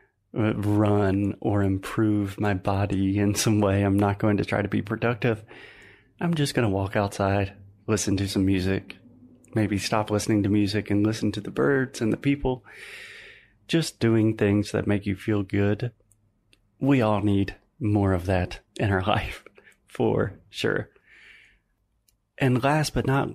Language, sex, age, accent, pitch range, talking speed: Portuguese, male, 30-49, American, 100-120 Hz, 160 wpm